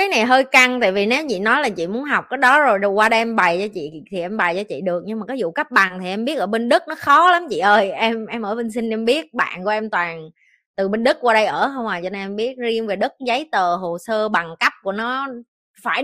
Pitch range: 195-255 Hz